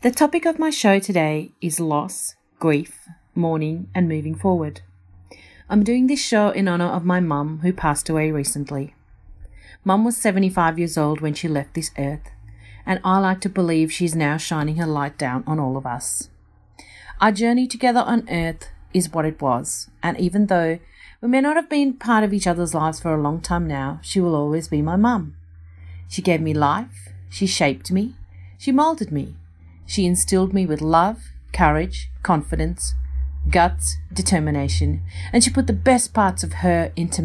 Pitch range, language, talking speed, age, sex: 135-185 Hz, English, 180 wpm, 40-59, female